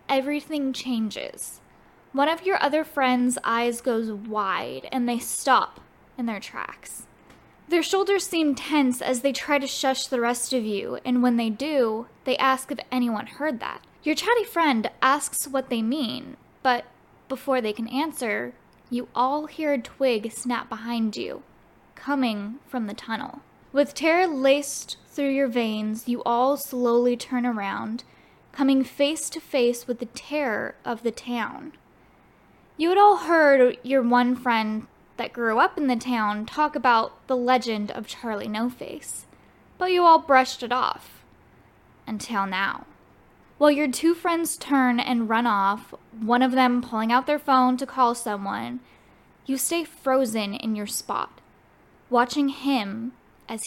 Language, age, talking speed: English, 10-29, 155 wpm